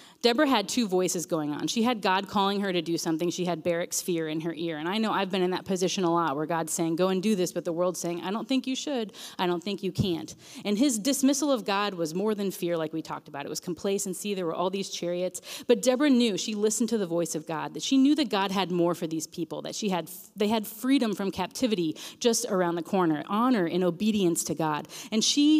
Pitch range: 175-240 Hz